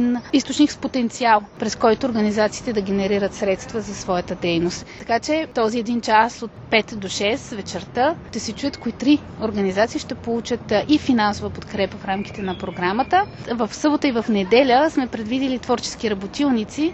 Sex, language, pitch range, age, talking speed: female, Bulgarian, 205-255 Hz, 20-39, 165 wpm